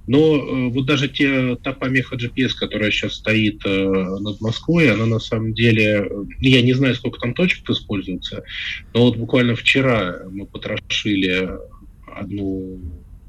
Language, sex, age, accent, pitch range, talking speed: Russian, male, 20-39, native, 95-115 Hz, 135 wpm